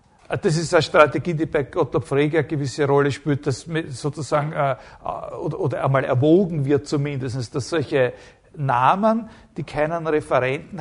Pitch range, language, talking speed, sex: 140-195 Hz, German, 135 wpm, male